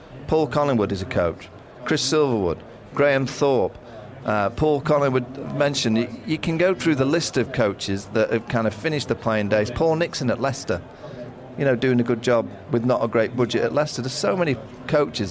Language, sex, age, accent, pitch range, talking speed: English, male, 40-59, British, 105-135 Hz, 200 wpm